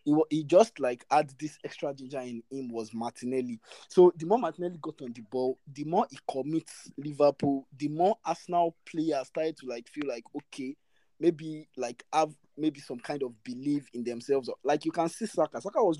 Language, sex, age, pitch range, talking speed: English, male, 20-39, 125-165 Hz, 190 wpm